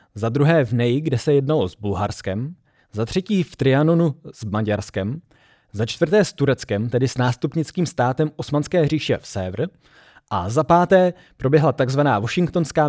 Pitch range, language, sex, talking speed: 115-155 Hz, Czech, male, 155 wpm